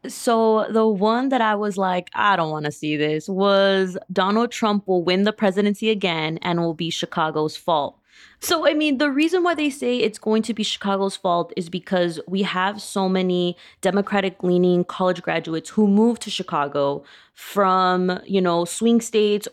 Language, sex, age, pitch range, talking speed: English, female, 20-39, 170-210 Hz, 180 wpm